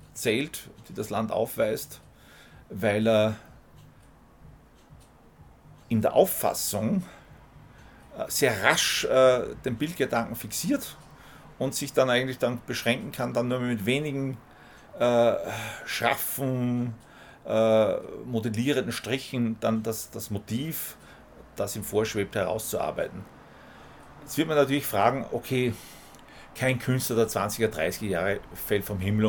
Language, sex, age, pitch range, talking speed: German, male, 40-59, 105-130 Hz, 110 wpm